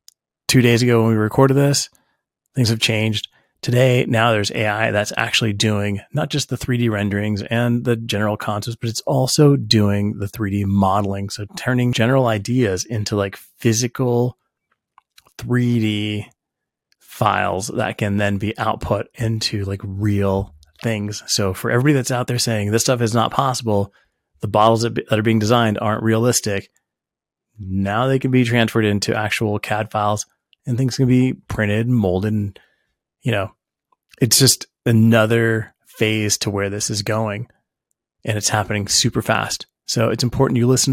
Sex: male